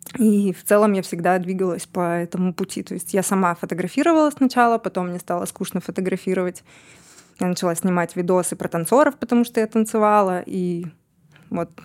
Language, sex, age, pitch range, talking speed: Russian, female, 20-39, 175-210 Hz, 160 wpm